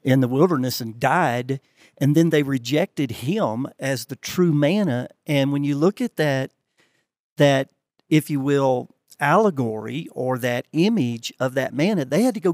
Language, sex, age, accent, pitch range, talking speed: English, male, 50-69, American, 135-180 Hz, 165 wpm